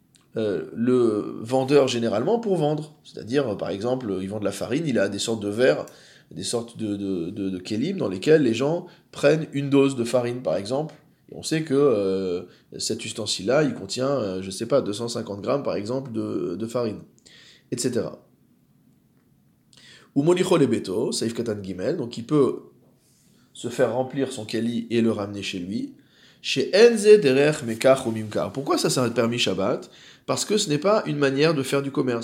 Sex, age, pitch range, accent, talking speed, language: male, 20-39, 115-145 Hz, French, 180 wpm, French